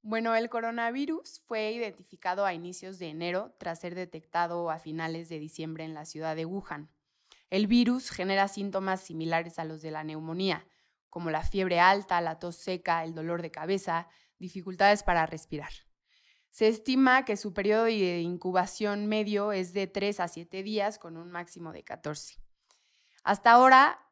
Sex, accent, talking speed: female, Mexican, 165 wpm